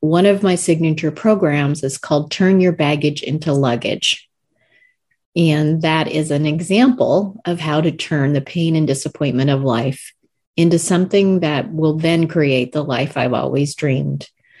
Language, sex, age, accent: English, female, 40-59, American